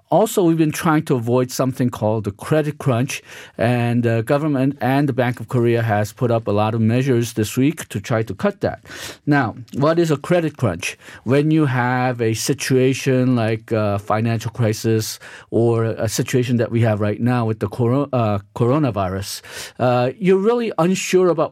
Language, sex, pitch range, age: Korean, male, 120-155 Hz, 50-69